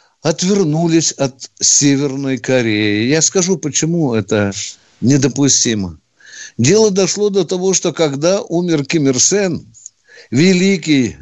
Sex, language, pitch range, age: male, Russian, 125-190 Hz, 60-79